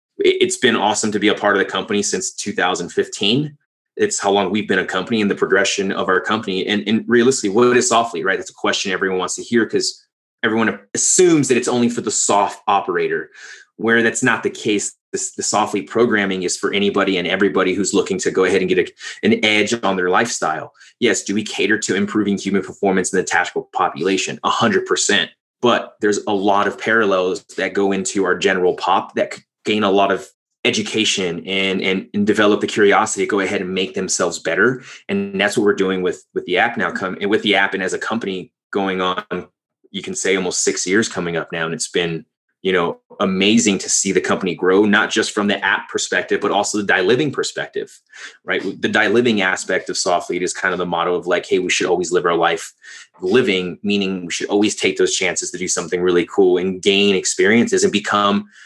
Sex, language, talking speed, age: male, English, 220 wpm, 30-49